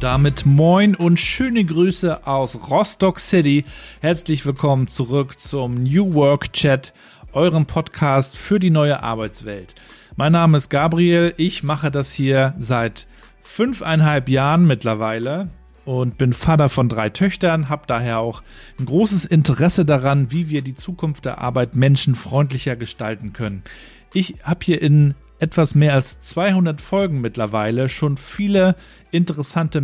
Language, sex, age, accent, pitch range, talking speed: German, male, 40-59, German, 130-160 Hz, 135 wpm